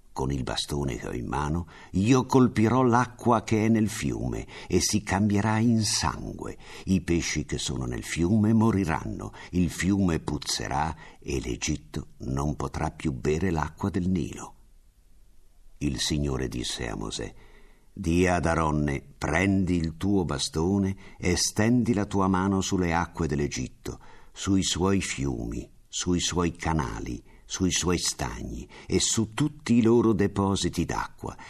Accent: native